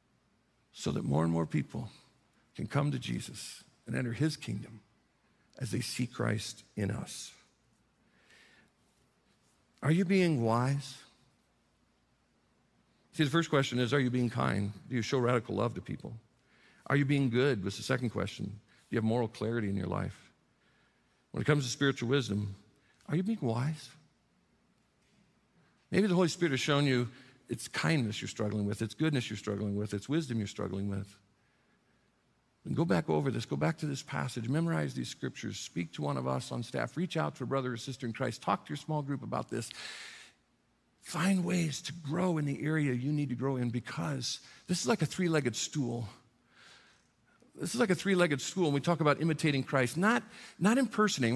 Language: English